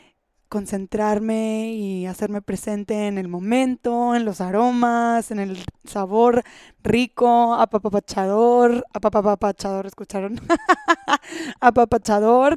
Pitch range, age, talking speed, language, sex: 220-255 Hz, 20-39, 85 wpm, Spanish, female